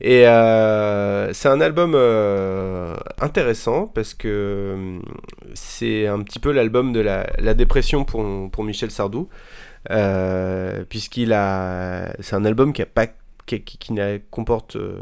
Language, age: French, 20-39